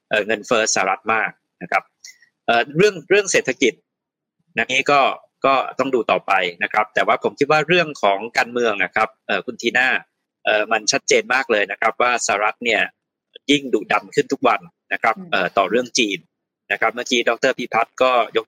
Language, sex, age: Thai, male, 20-39